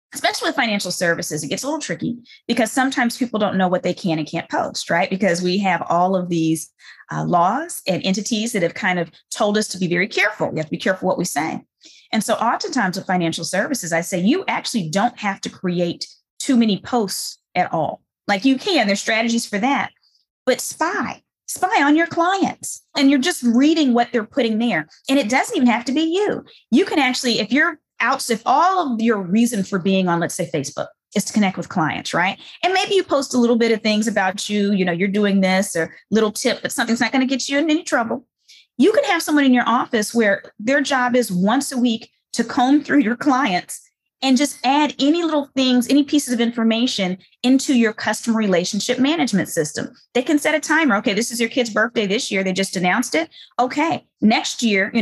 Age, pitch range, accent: 20-39, 195-270 Hz, American